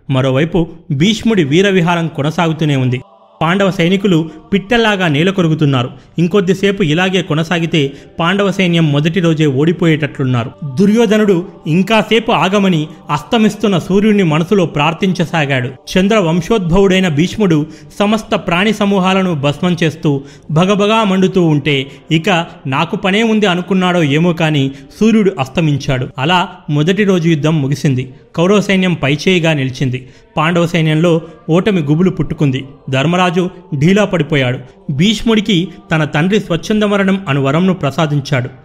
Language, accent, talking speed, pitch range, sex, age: Telugu, native, 100 wpm, 150-195 Hz, male, 30-49